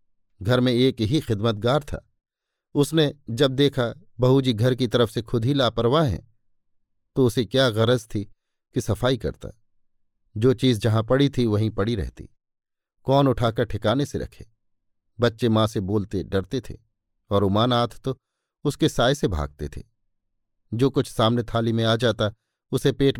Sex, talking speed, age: male, 165 wpm, 50-69